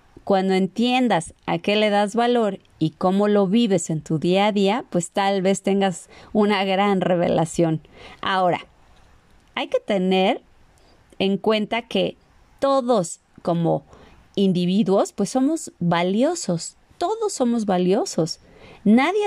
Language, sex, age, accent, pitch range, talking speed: Spanish, female, 30-49, Mexican, 185-255 Hz, 125 wpm